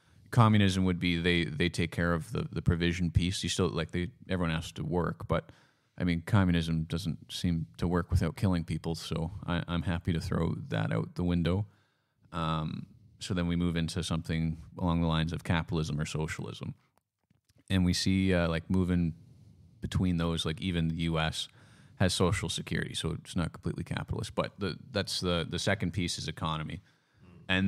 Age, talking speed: 30-49, 185 wpm